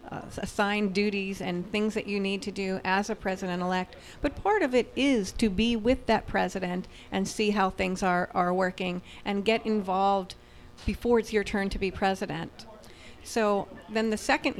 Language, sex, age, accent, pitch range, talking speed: English, female, 40-59, American, 180-205 Hz, 175 wpm